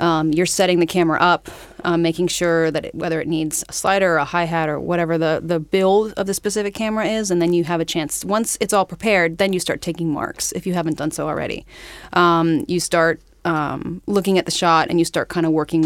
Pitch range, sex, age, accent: 160-180 Hz, female, 30-49, American